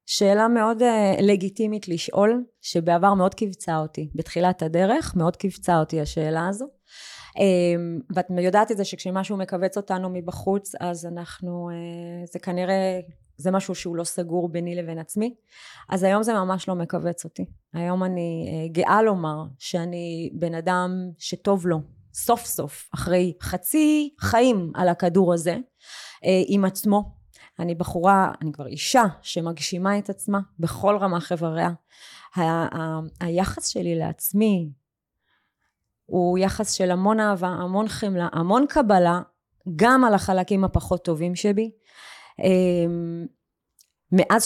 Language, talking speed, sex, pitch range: Hebrew, 135 wpm, female, 170-200 Hz